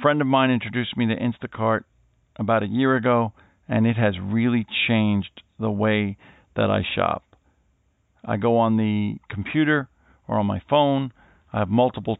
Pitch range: 105-120 Hz